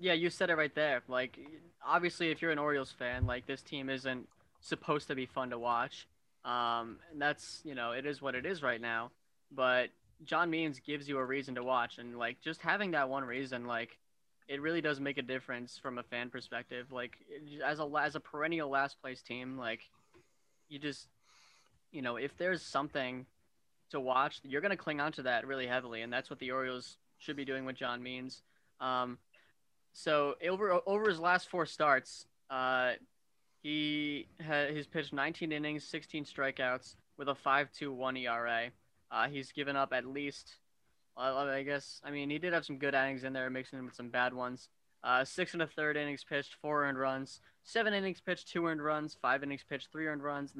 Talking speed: 205 wpm